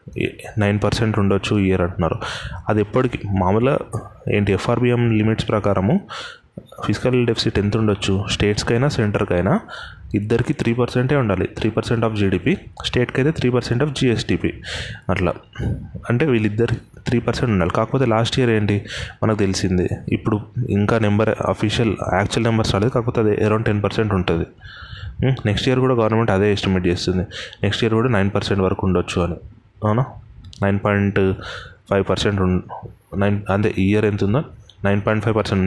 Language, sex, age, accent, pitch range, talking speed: Telugu, male, 30-49, native, 100-120 Hz, 145 wpm